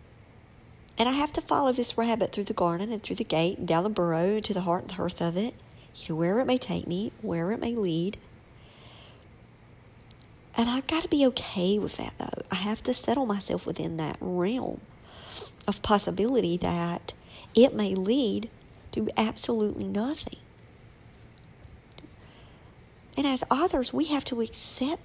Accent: American